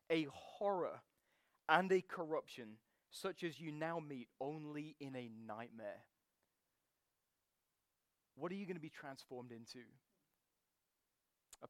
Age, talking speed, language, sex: 20-39, 120 wpm, English, male